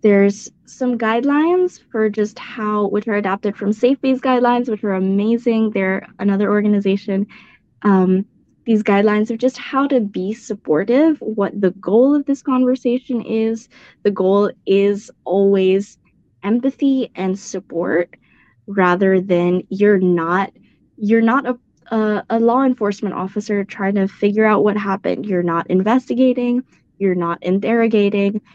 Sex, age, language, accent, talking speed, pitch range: female, 10-29, English, American, 135 wpm, 190-235 Hz